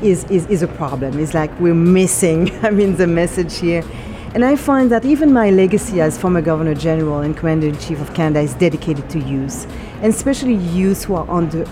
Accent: French